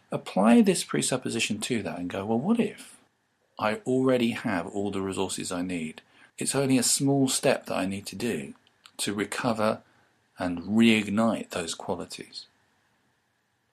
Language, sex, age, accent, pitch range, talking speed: English, male, 40-59, British, 95-130 Hz, 150 wpm